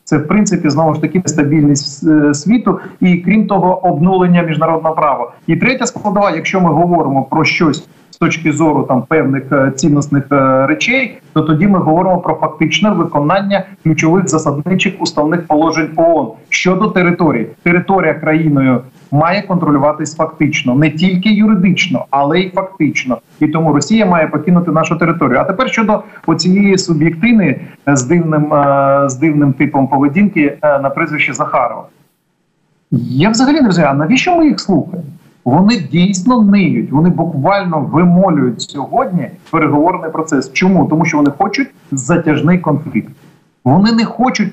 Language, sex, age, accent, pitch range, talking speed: Ukrainian, male, 40-59, native, 155-190 Hz, 145 wpm